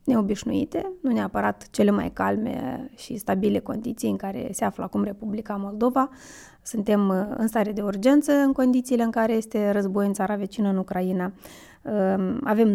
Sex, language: female, Romanian